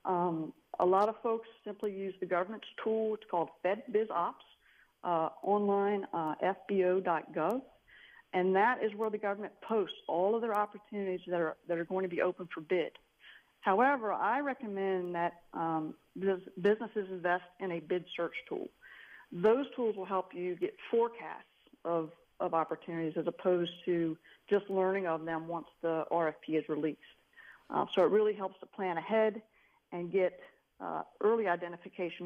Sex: female